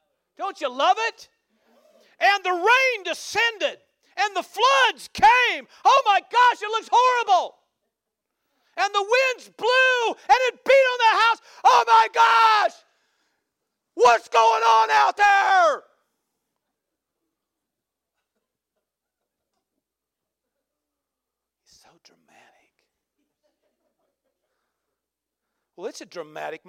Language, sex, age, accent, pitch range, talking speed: English, male, 50-69, American, 275-455 Hz, 95 wpm